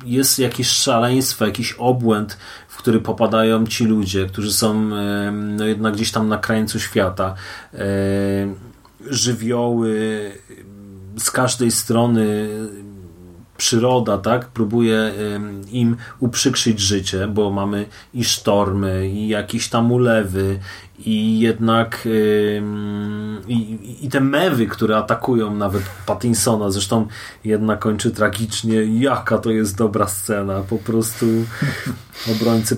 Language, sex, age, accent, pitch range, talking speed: Polish, male, 30-49, native, 105-130 Hz, 110 wpm